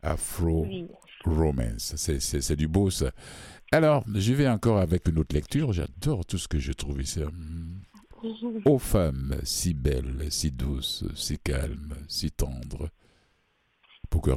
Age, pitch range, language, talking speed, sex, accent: 60-79, 70-85 Hz, French, 140 wpm, male, French